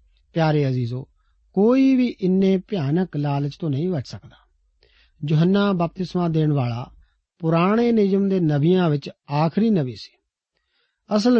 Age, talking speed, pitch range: 50-69, 125 wpm, 150-210 Hz